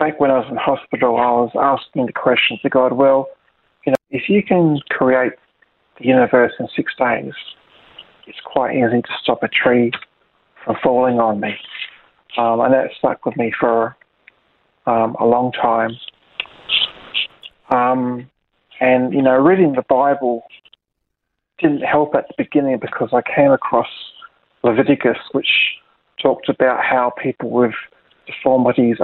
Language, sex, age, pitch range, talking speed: English, male, 40-59, 120-130 Hz, 145 wpm